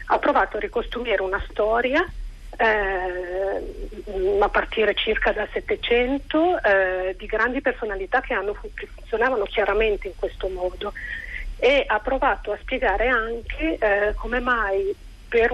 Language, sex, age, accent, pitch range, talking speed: Italian, female, 40-59, native, 200-265 Hz, 130 wpm